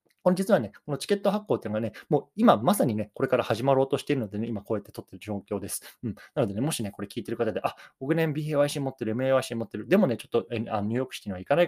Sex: male